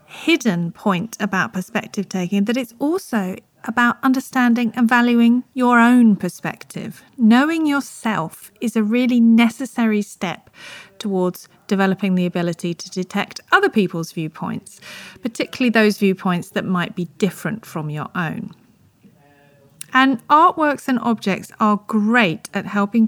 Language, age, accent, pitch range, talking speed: English, 40-59, British, 190-245 Hz, 125 wpm